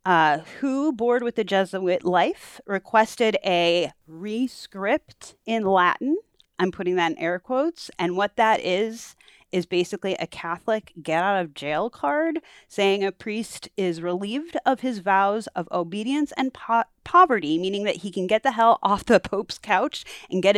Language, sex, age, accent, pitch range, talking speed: English, female, 30-49, American, 185-255 Hz, 155 wpm